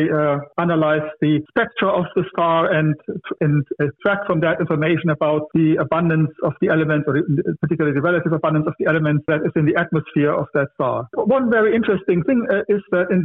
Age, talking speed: 60-79, 195 wpm